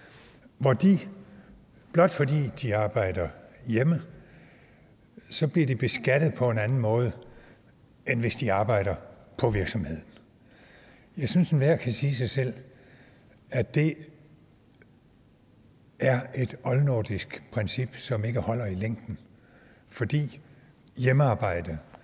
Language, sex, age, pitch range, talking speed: Danish, male, 60-79, 105-140 Hz, 115 wpm